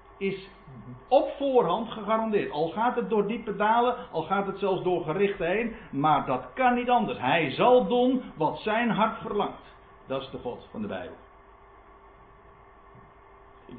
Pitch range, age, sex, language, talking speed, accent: 130-210 Hz, 50-69, male, Dutch, 160 wpm, Dutch